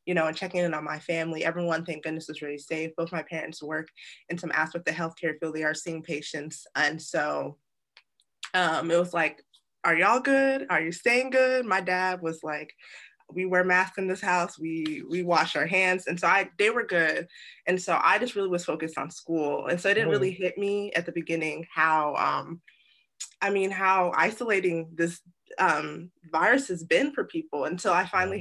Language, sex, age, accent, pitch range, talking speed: English, female, 20-39, American, 160-190 Hz, 205 wpm